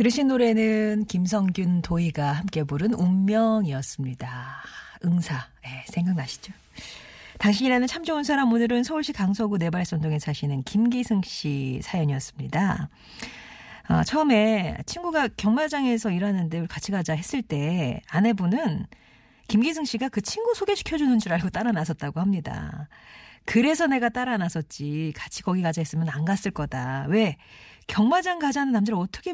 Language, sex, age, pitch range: Korean, female, 40-59, 160-225 Hz